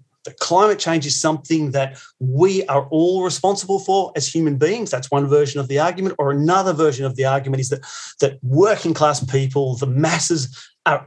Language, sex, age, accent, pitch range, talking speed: English, male, 30-49, Australian, 135-165 Hz, 185 wpm